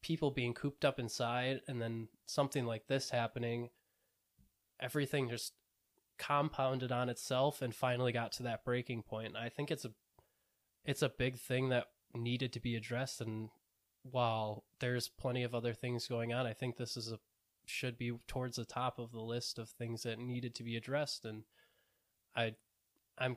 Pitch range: 115-130 Hz